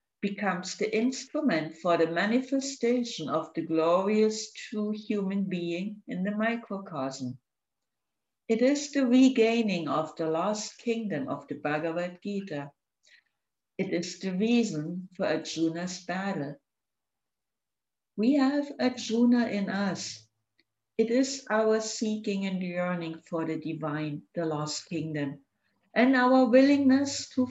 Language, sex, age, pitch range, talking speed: English, female, 60-79, 160-225 Hz, 120 wpm